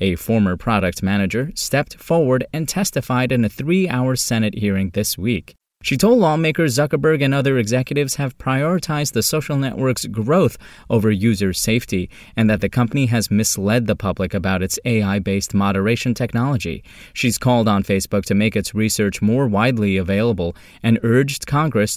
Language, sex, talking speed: English, male, 160 wpm